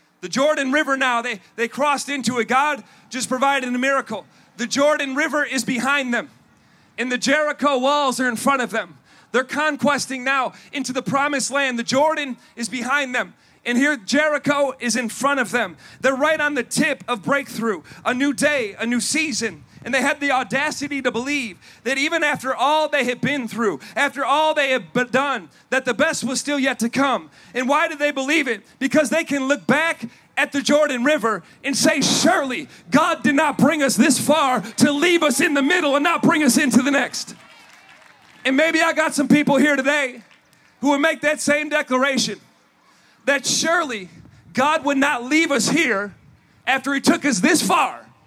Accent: American